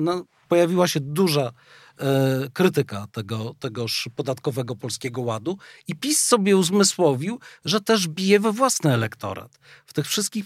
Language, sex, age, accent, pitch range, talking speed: Polish, male, 40-59, native, 135-175 Hz, 120 wpm